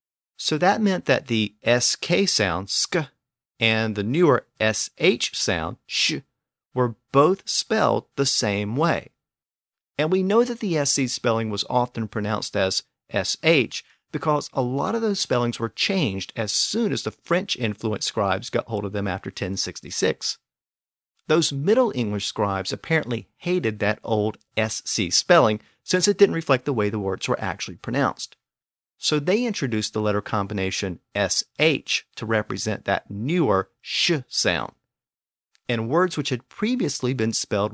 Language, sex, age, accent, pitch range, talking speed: English, male, 50-69, American, 105-145 Hz, 150 wpm